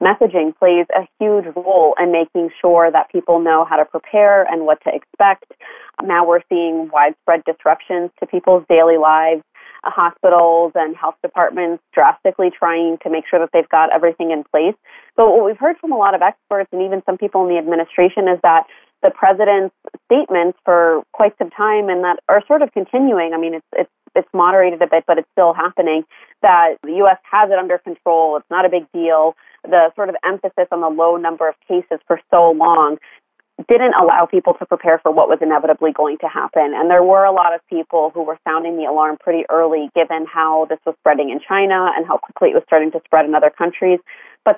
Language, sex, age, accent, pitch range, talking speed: English, female, 30-49, American, 165-190 Hz, 210 wpm